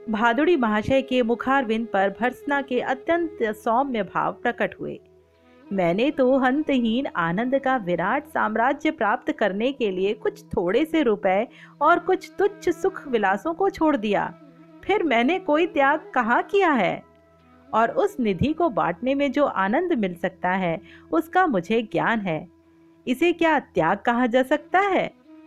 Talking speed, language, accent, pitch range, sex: 150 wpm, Hindi, native, 200-295 Hz, female